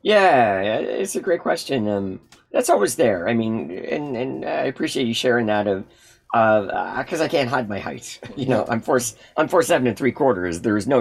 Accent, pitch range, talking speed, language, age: American, 100-125 Hz, 220 wpm, English, 40-59